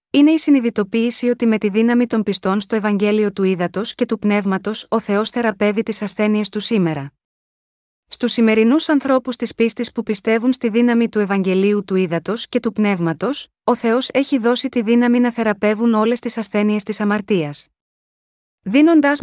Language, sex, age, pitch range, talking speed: Greek, female, 30-49, 200-240 Hz, 165 wpm